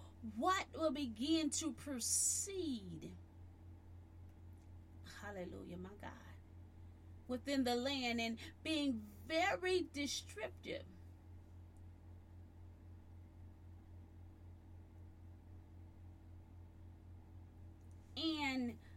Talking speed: 50 wpm